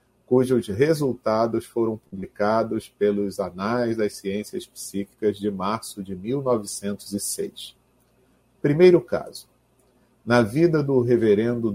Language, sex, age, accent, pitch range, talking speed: Portuguese, male, 40-59, Brazilian, 105-130 Hz, 95 wpm